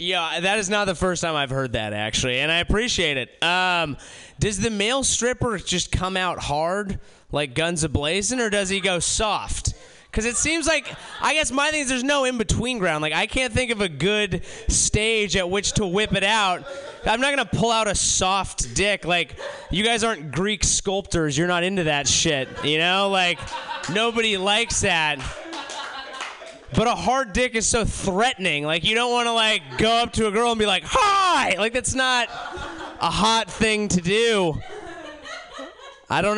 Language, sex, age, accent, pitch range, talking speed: English, male, 20-39, American, 150-230 Hz, 195 wpm